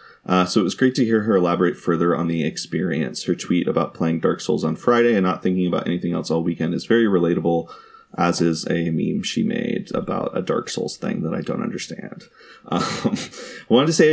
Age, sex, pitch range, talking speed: 30-49, male, 85-105 Hz, 220 wpm